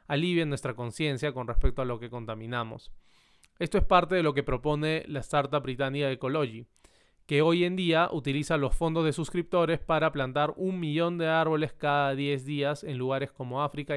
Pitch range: 135-155 Hz